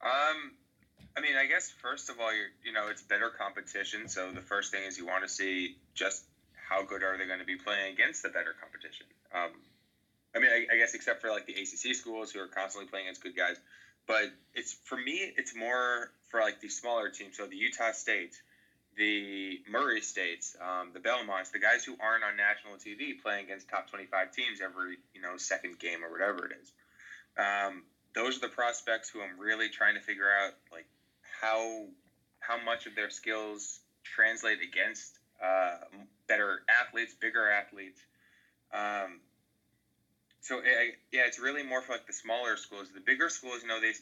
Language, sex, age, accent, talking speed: English, male, 20-39, American, 190 wpm